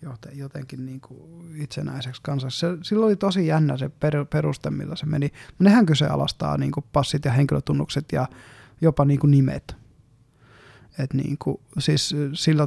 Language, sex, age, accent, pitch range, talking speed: Finnish, male, 20-39, native, 135-160 Hz, 155 wpm